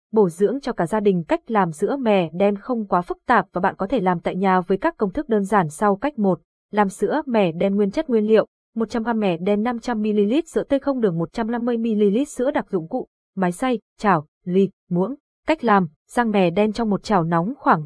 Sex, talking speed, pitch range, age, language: female, 225 wpm, 185-240 Hz, 20-39, Vietnamese